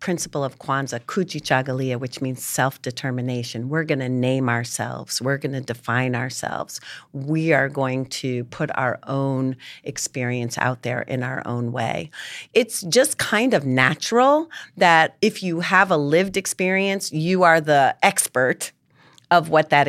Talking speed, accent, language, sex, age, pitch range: 155 wpm, American, English, female, 40-59, 130-190 Hz